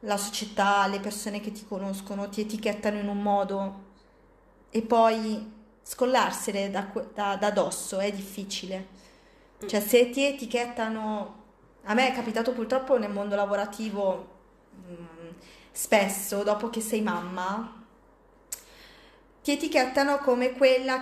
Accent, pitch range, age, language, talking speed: native, 210-265 Hz, 20-39, Italian, 125 wpm